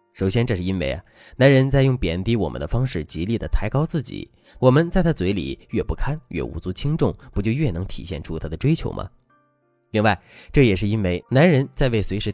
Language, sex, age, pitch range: Chinese, male, 20-39, 95-140 Hz